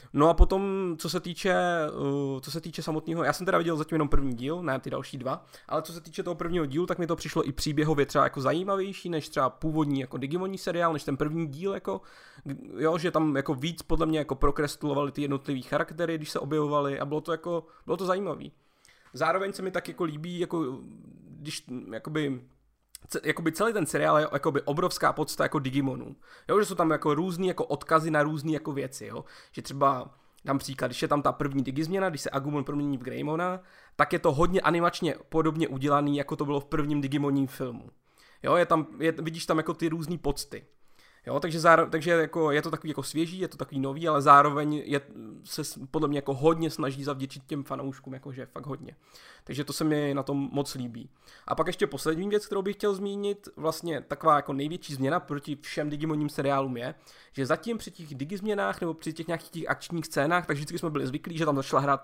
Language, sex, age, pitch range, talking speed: Czech, male, 20-39, 140-170 Hz, 210 wpm